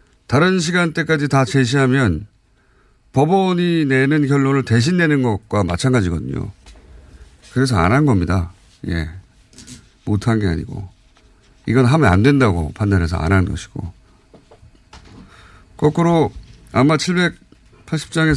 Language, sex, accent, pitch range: Korean, male, native, 100-140 Hz